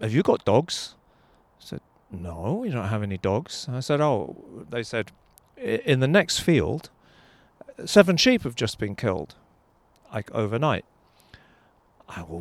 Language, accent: English, British